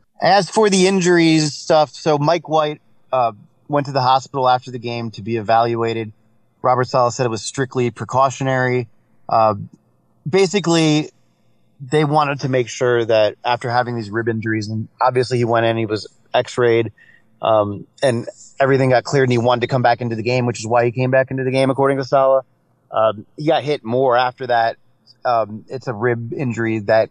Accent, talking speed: American, 190 wpm